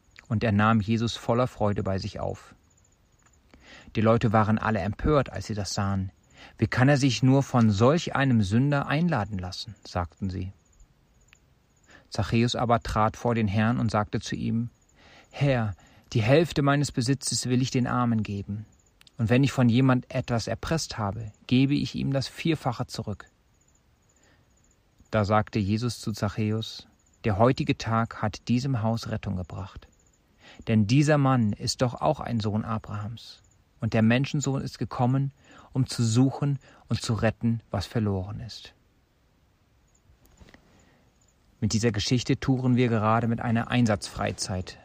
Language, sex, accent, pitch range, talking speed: German, male, German, 105-125 Hz, 145 wpm